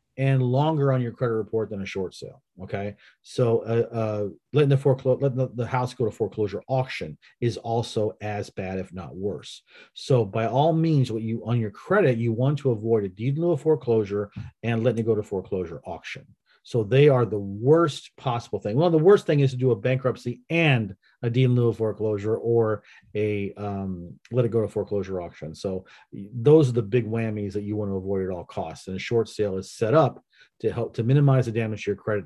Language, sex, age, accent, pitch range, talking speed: English, male, 40-59, American, 105-130 Hz, 220 wpm